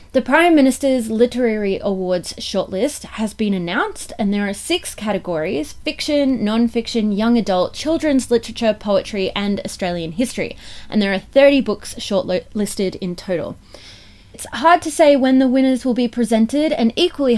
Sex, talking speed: female, 150 wpm